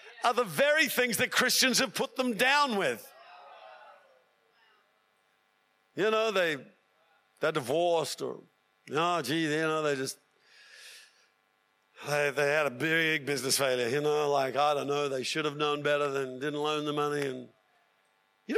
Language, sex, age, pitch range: English, male, 50-69, 165-250 Hz